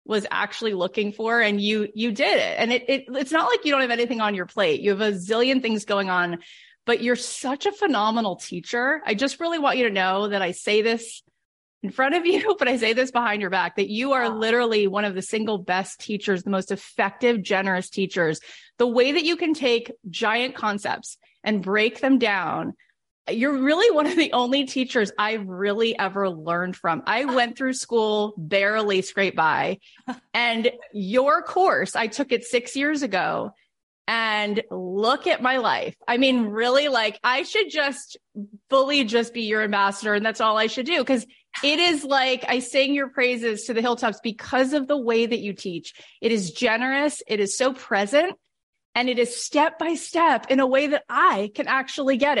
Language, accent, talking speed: English, American, 200 wpm